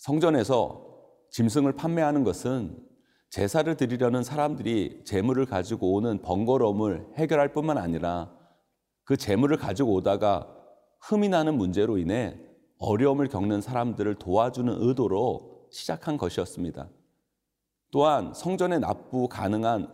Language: Korean